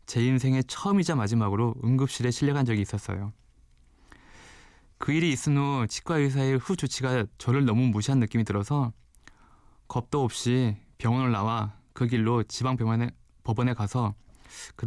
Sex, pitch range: male, 110-140 Hz